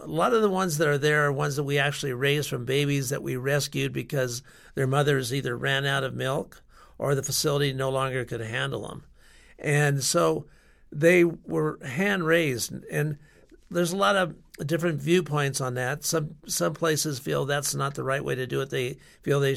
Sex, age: male, 50-69